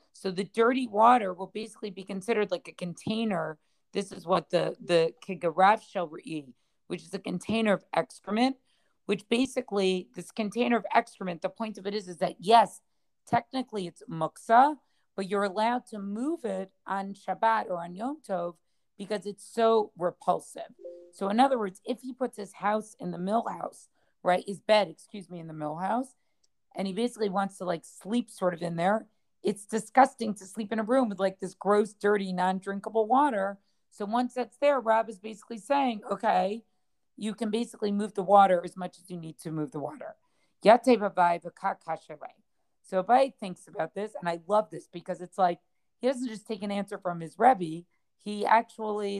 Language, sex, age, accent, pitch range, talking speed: English, female, 40-59, American, 180-225 Hz, 185 wpm